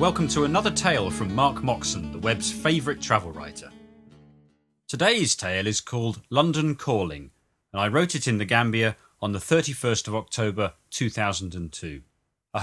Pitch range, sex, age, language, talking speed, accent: 95-135 Hz, male, 30-49, English, 150 wpm, British